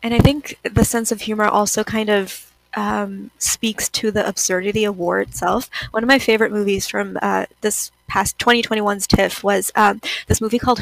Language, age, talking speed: English, 20-39, 190 wpm